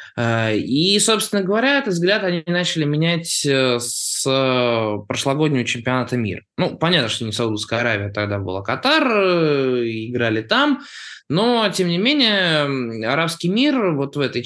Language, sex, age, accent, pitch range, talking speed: Russian, male, 20-39, native, 120-200 Hz, 135 wpm